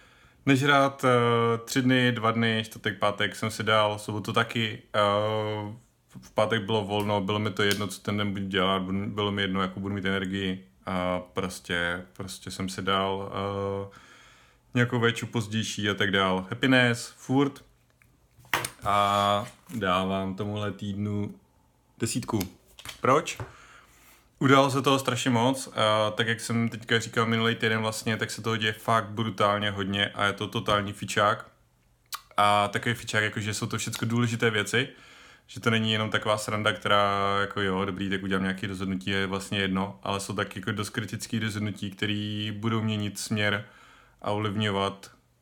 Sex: male